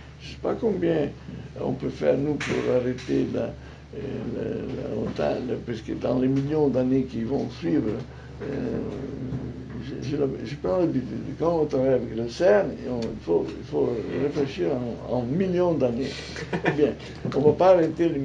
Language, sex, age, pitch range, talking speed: French, male, 60-79, 120-150 Hz, 160 wpm